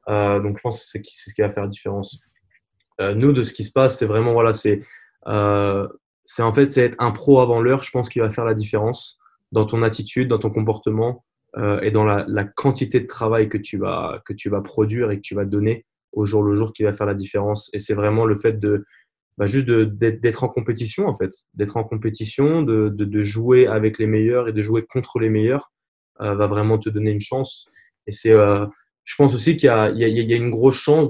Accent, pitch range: French, 105-120 Hz